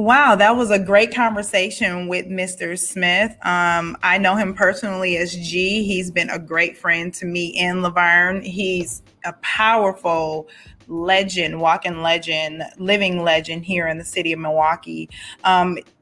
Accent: American